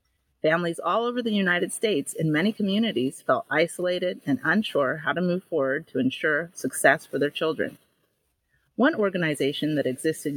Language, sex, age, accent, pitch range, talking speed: English, female, 30-49, American, 145-205 Hz, 155 wpm